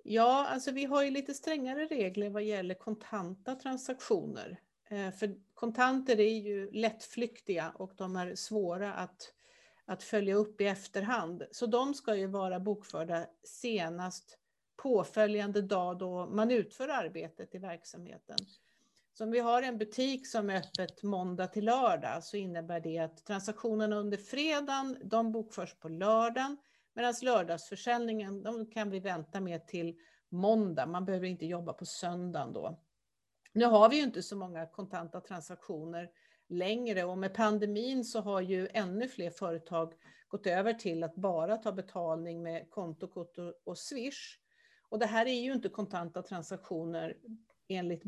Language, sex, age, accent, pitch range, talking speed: Swedish, female, 50-69, native, 180-230 Hz, 150 wpm